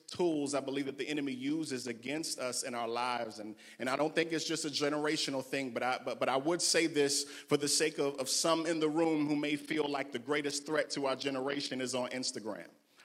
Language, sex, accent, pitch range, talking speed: English, male, American, 135-185 Hz, 240 wpm